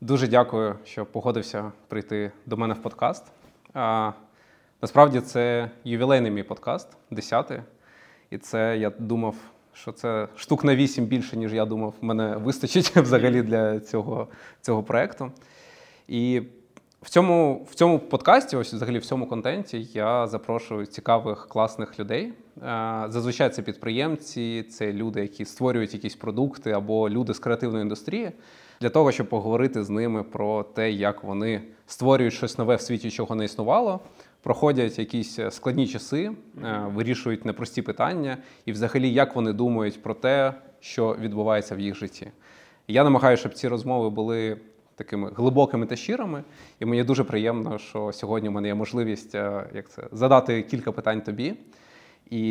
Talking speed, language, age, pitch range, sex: 150 wpm, Ukrainian, 20-39, 110-130 Hz, male